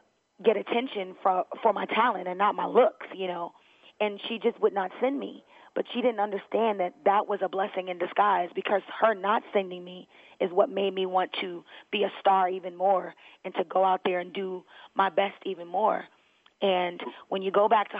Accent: American